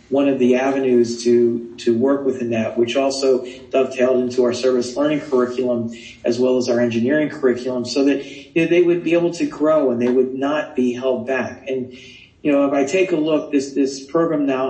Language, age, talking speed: English, 50-69, 210 wpm